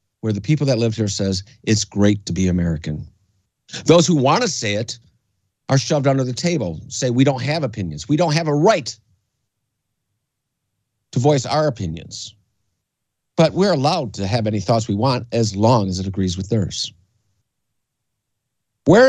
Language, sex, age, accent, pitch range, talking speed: English, male, 50-69, American, 110-155 Hz, 170 wpm